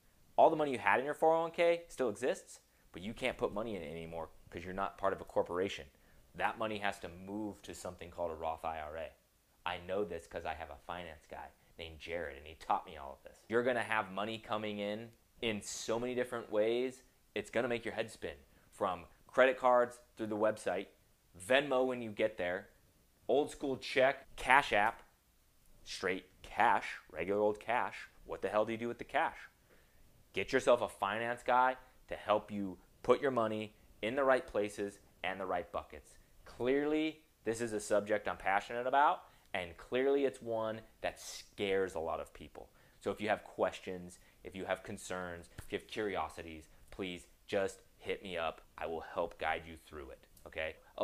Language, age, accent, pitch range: English, 30-49, American, 90-120 Hz